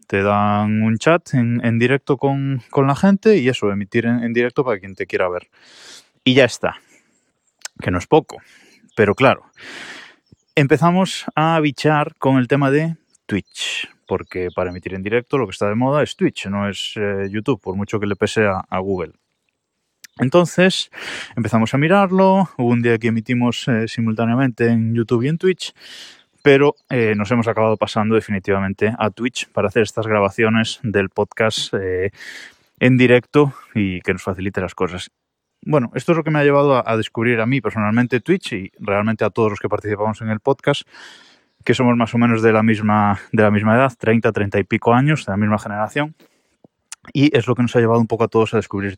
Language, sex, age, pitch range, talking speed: Spanish, male, 20-39, 105-140 Hz, 195 wpm